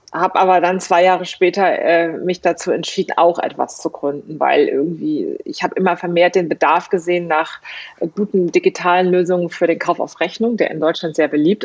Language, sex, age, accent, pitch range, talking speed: German, female, 30-49, German, 165-190 Hz, 190 wpm